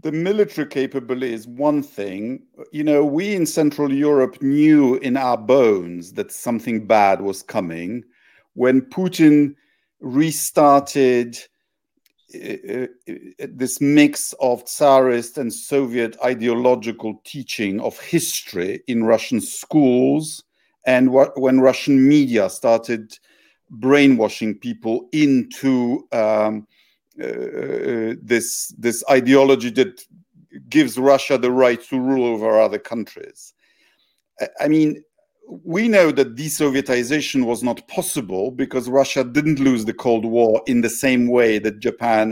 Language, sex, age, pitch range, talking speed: Polish, male, 50-69, 120-155 Hz, 120 wpm